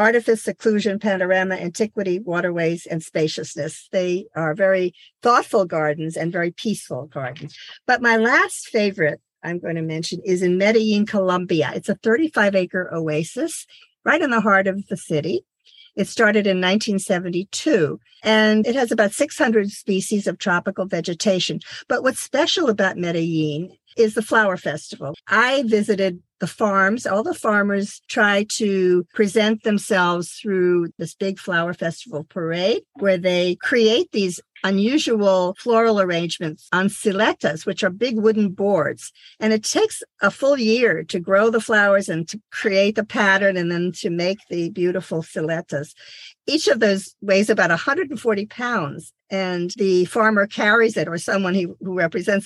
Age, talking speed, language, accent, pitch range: 50-69, 150 wpm, English, American, 175-220 Hz